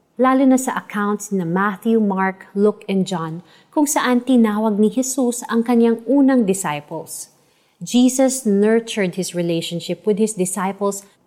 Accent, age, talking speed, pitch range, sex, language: native, 30-49, 140 wpm, 185-235 Hz, female, Filipino